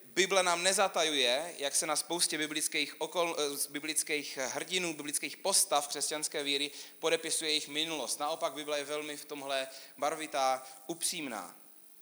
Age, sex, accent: 30-49, male, native